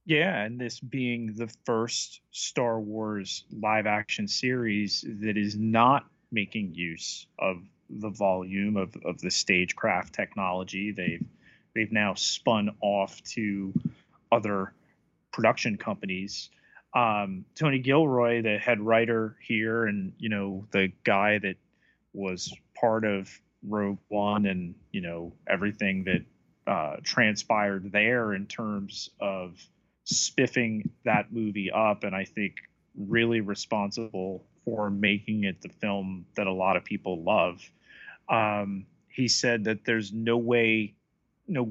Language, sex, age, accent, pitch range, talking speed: English, male, 30-49, American, 100-115 Hz, 130 wpm